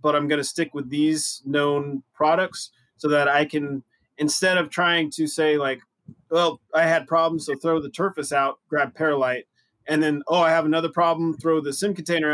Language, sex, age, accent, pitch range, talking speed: English, male, 30-49, American, 135-160 Hz, 200 wpm